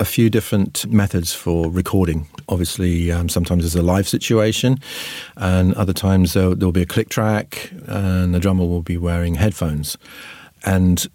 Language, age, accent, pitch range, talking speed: English, 40-59, British, 90-100 Hz, 160 wpm